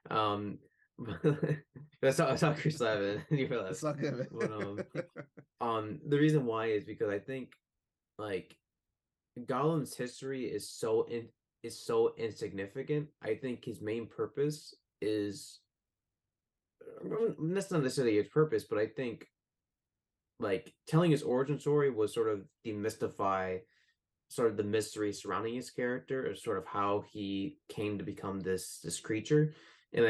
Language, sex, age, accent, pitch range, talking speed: English, male, 20-39, American, 105-145 Hz, 140 wpm